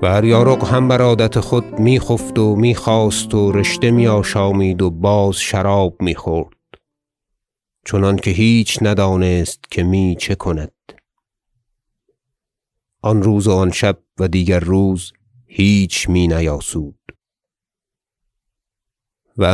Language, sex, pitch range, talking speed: Persian, male, 90-110 Hz, 110 wpm